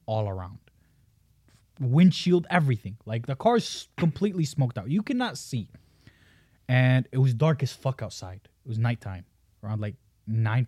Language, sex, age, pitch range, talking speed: English, male, 20-39, 110-135 Hz, 145 wpm